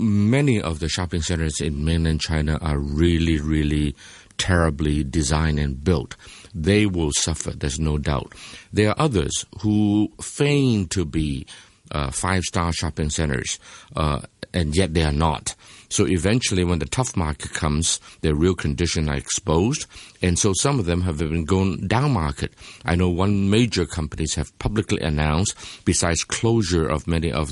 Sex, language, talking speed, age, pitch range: male, English, 160 wpm, 50-69, 80-95 Hz